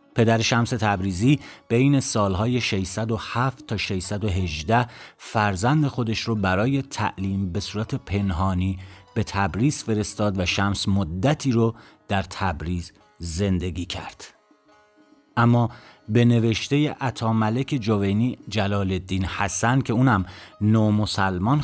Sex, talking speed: male, 105 wpm